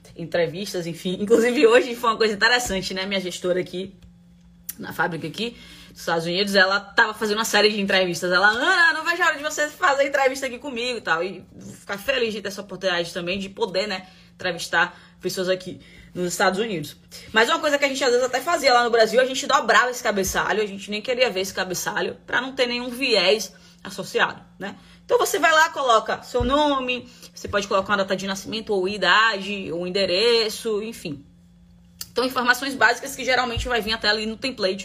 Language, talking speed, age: Portuguese, 200 wpm, 20-39